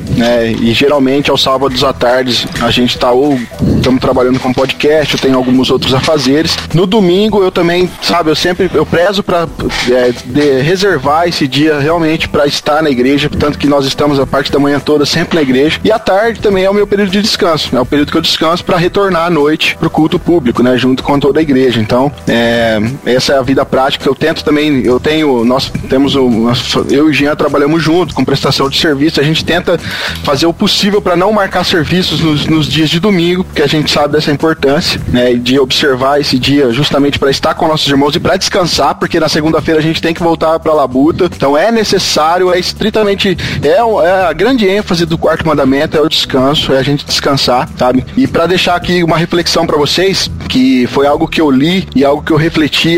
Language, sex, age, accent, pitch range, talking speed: Portuguese, male, 20-39, Brazilian, 135-170 Hz, 220 wpm